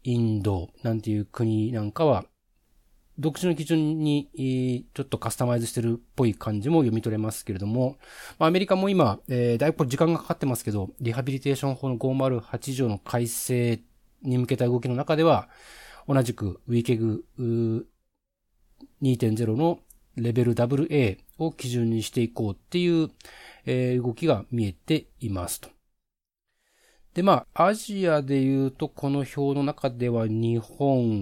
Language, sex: Japanese, male